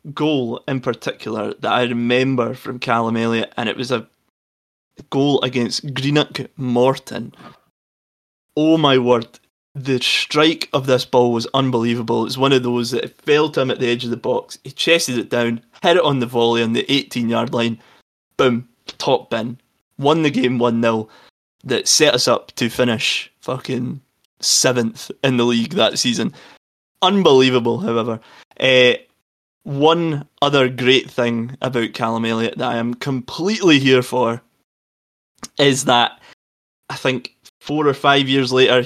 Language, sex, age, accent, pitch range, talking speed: English, male, 20-39, British, 120-135 Hz, 160 wpm